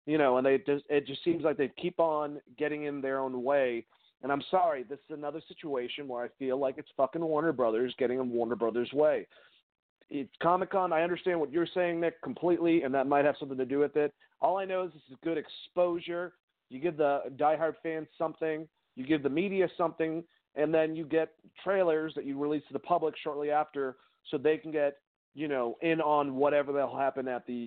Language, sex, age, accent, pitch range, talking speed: English, male, 40-59, American, 140-170 Hz, 215 wpm